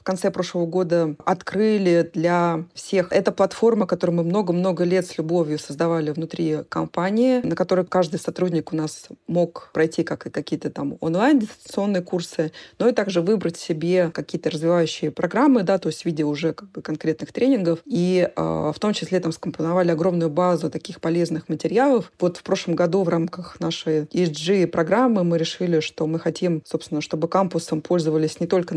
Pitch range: 165-195 Hz